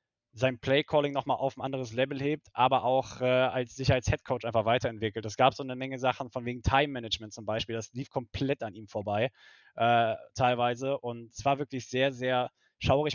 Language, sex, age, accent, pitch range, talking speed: German, male, 20-39, German, 120-135 Hz, 190 wpm